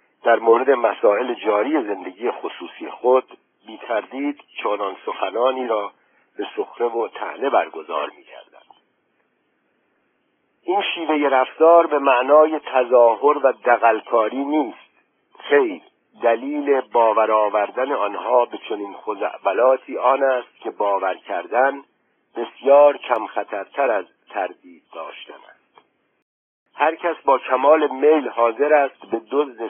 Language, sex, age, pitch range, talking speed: Persian, male, 50-69, 120-170 Hz, 110 wpm